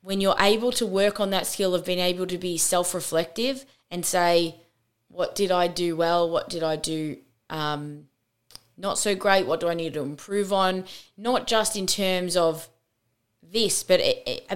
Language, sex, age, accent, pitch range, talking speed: English, female, 20-39, Australian, 160-190 Hz, 180 wpm